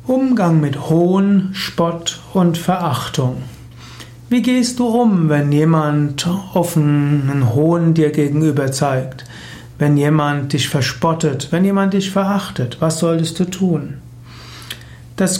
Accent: German